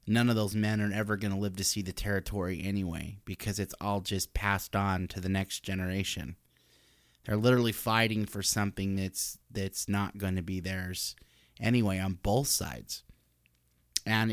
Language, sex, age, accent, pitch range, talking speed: English, male, 30-49, American, 90-105 Hz, 170 wpm